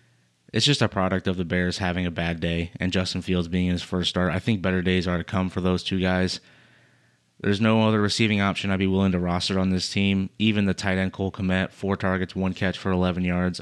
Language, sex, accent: English, male, American